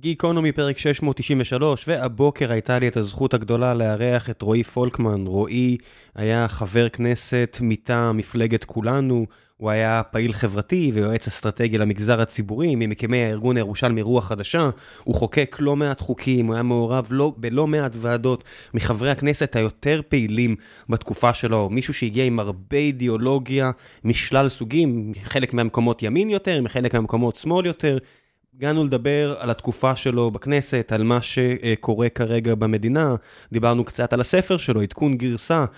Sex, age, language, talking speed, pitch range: male, 20-39, Hebrew, 140 wpm, 115-135 Hz